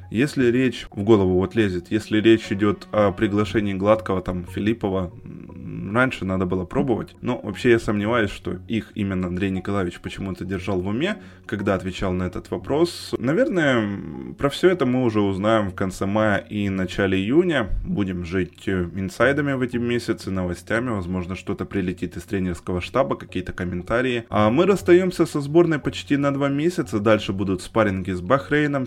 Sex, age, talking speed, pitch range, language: male, 20-39, 160 wpm, 95-135 Hz, Ukrainian